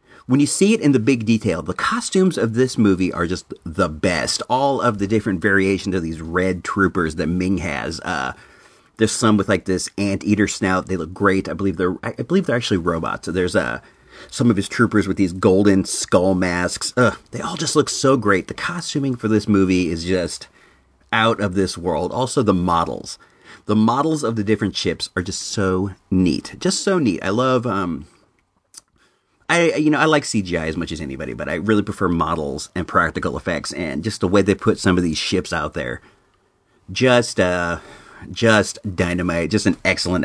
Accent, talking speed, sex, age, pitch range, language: American, 195 wpm, male, 40-59, 95-130 Hz, English